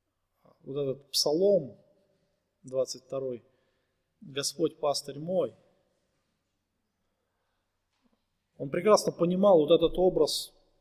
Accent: native